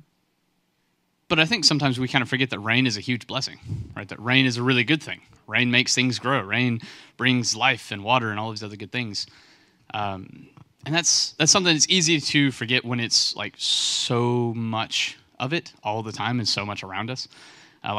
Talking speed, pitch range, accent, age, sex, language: 205 wpm, 110-140 Hz, American, 20-39, male, English